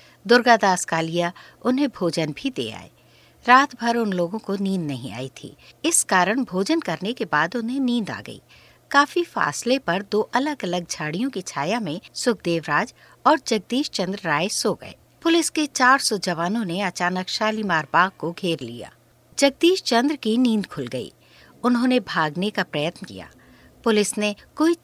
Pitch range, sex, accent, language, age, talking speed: 170-245 Hz, female, native, Hindi, 60-79, 165 wpm